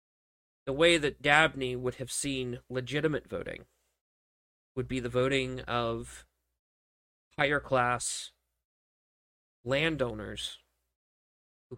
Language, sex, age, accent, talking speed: English, male, 30-49, American, 90 wpm